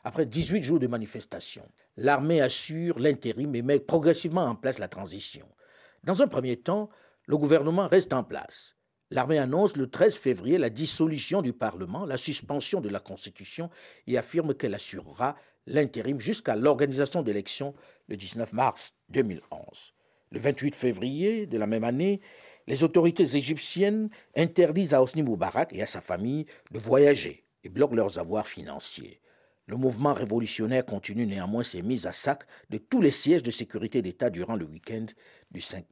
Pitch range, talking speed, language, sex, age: 110-160 Hz, 160 wpm, French, male, 50-69